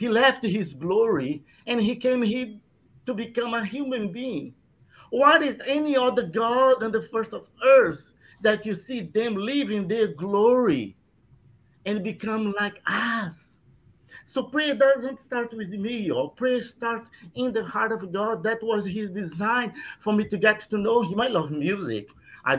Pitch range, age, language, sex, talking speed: 175-230 Hz, 50-69, English, male, 170 wpm